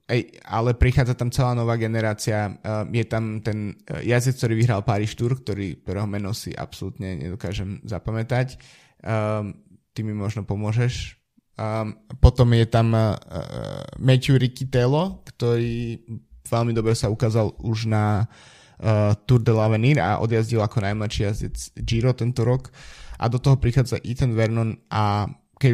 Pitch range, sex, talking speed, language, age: 105-120 Hz, male, 145 wpm, Slovak, 20-39